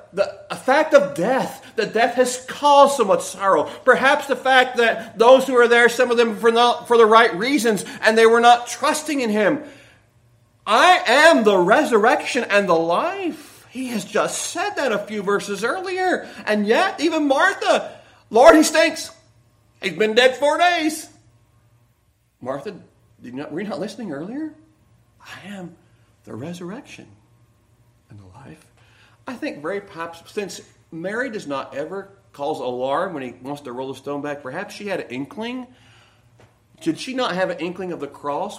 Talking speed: 170 wpm